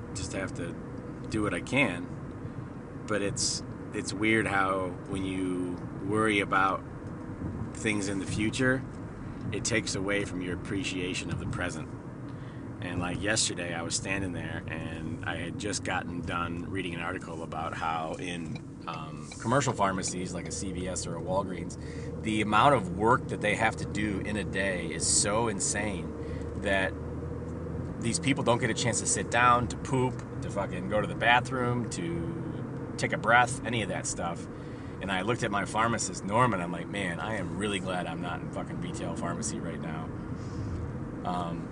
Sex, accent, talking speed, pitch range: male, American, 175 wpm, 90-120 Hz